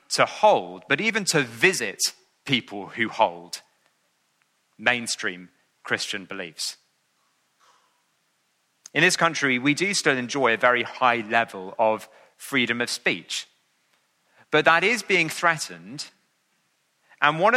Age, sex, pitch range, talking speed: 30-49, male, 115-160 Hz, 115 wpm